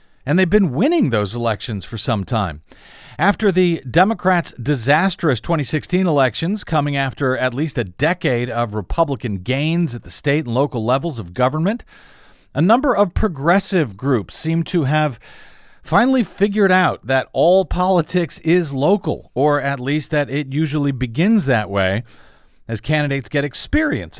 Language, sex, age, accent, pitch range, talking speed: English, male, 50-69, American, 120-170 Hz, 150 wpm